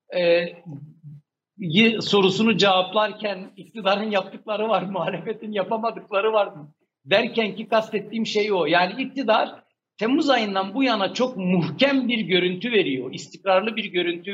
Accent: native